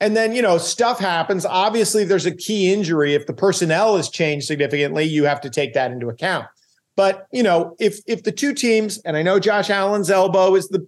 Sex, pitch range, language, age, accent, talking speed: male, 165-220 Hz, English, 40-59, American, 215 wpm